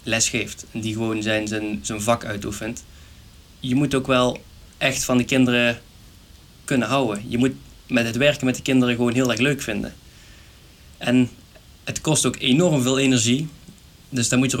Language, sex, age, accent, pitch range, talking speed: Dutch, male, 20-39, Dutch, 110-130 Hz, 175 wpm